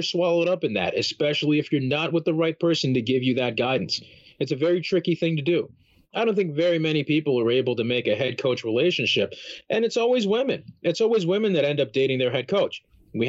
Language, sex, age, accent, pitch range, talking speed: English, male, 40-59, American, 130-175 Hz, 240 wpm